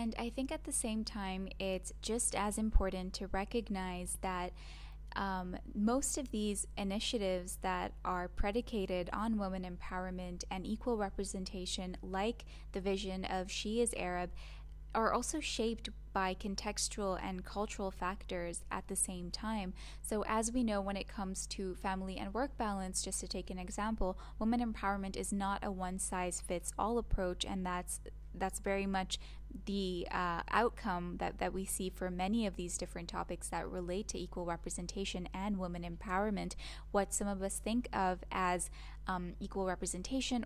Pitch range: 185-210 Hz